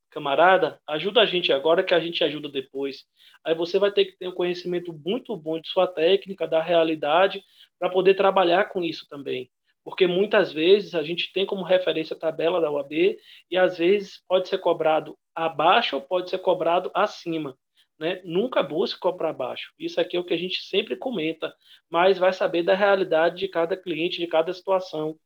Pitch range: 160-195 Hz